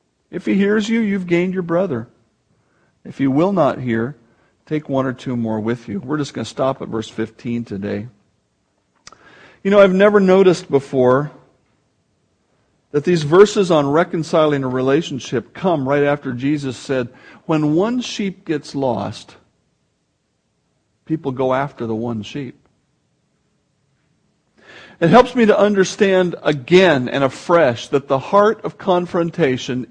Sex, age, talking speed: male, 50-69, 140 wpm